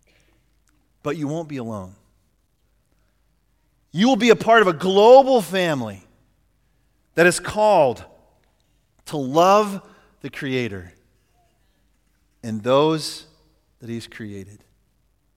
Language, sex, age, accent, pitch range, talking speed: English, male, 40-59, American, 170-225 Hz, 100 wpm